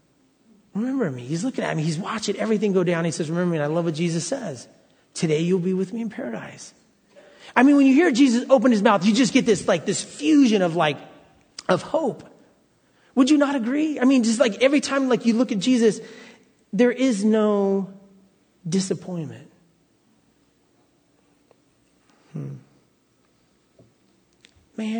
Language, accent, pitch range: English, American, 160-225 Hz